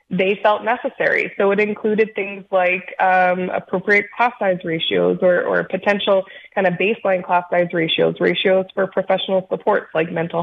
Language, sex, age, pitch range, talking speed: English, female, 20-39, 180-205 Hz, 160 wpm